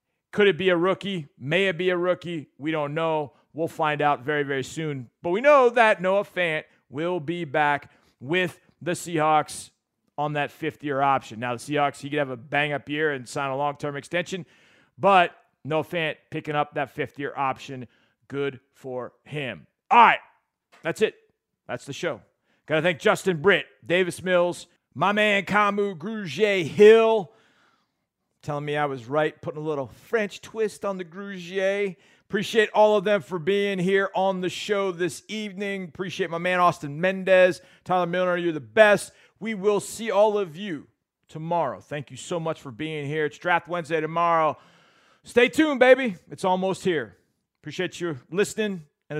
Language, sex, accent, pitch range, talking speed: English, male, American, 150-195 Hz, 170 wpm